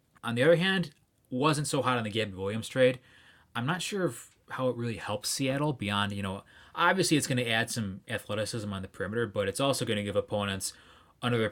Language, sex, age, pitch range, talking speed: English, male, 20-39, 100-135 Hz, 210 wpm